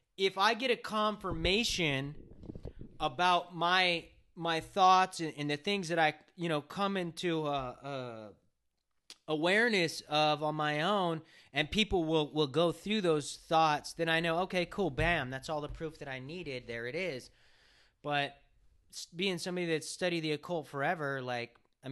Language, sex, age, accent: English, male, 30-49, American